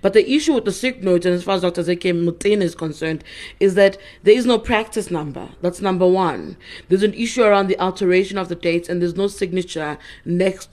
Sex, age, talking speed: female, 30-49, 225 wpm